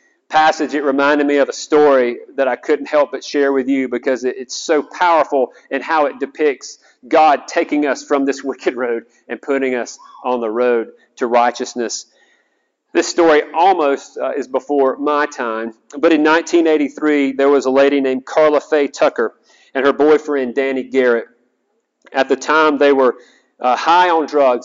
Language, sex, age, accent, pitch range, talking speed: English, male, 40-59, American, 130-160 Hz, 175 wpm